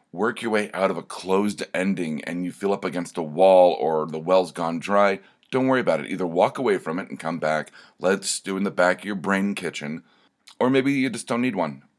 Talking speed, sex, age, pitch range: 240 wpm, male, 40-59, 80-105 Hz